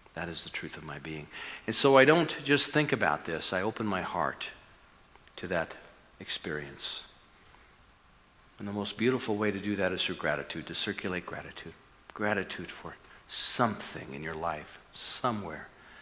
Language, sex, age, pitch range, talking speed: English, male, 50-69, 90-110 Hz, 160 wpm